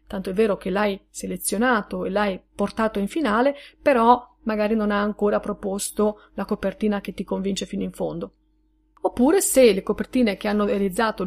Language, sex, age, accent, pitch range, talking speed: Italian, female, 30-49, native, 210-265 Hz, 170 wpm